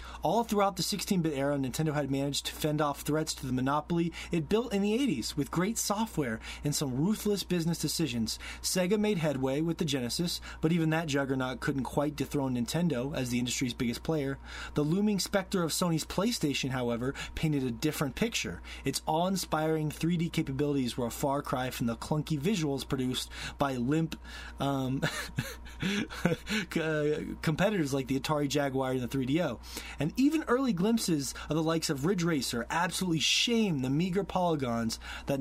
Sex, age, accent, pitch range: male, 30-49, American, 130-170 Hz